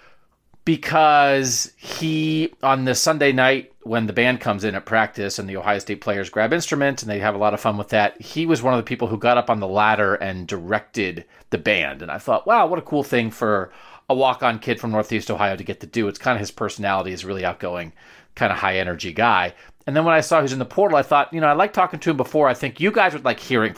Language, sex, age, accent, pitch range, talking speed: English, male, 40-59, American, 110-155 Hz, 260 wpm